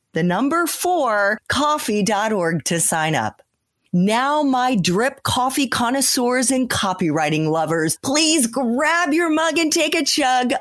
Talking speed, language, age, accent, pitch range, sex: 130 wpm, English, 40-59, American, 190-285 Hz, female